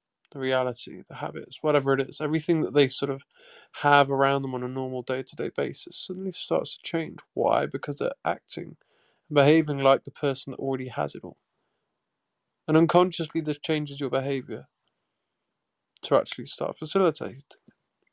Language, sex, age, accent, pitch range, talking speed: English, male, 20-39, British, 140-170 Hz, 160 wpm